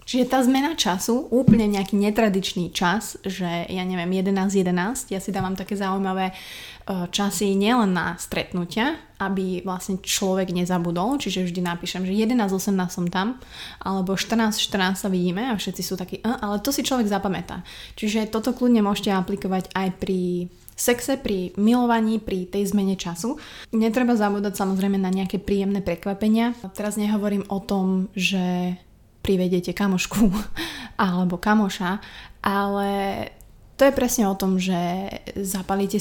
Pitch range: 185-215 Hz